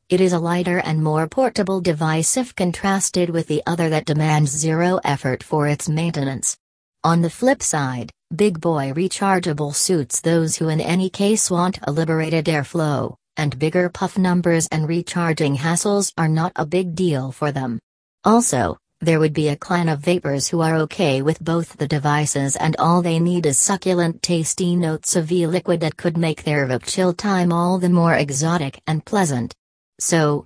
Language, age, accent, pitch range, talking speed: English, 40-59, American, 150-175 Hz, 175 wpm